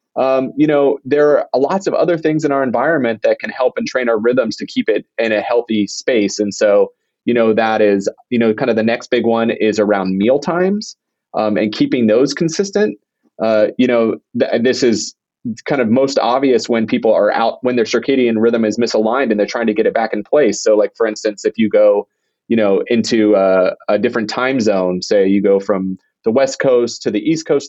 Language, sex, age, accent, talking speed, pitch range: English, male, 30-49, American, 220 wpm, 115-150 Hz